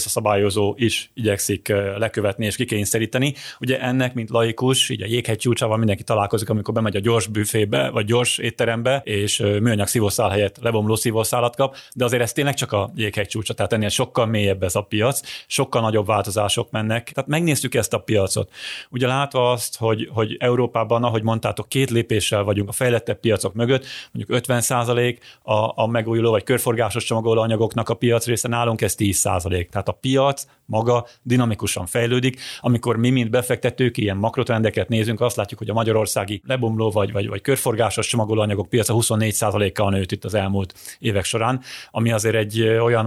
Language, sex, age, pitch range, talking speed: Hungarian, male, 30-49, 105-120 Hz, 165 wpm